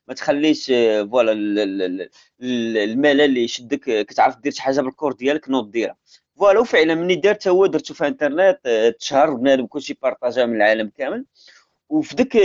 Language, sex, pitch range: Arabic, male, 125-195 Hz